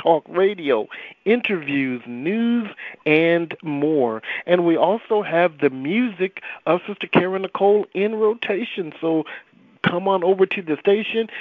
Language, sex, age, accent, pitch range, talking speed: English, male, 50-69, American, 155-220 Hz, 130 wpm